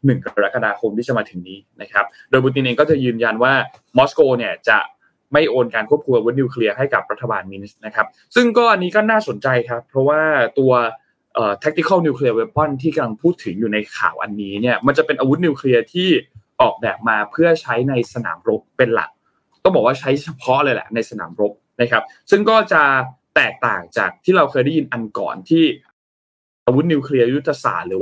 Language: Thai